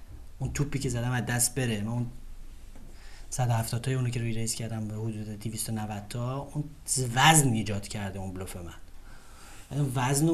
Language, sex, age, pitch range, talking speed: Persian, male, 30-49, 115-150 Hz, 180 wpm